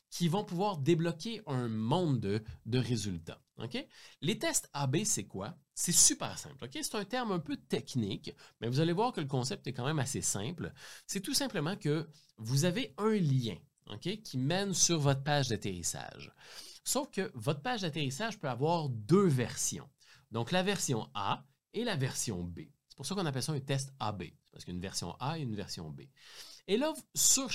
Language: French